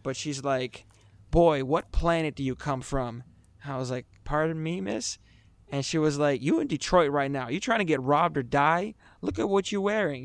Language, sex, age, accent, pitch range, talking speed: English, male, 20-39, American, 130-155 Hz, 215 wpm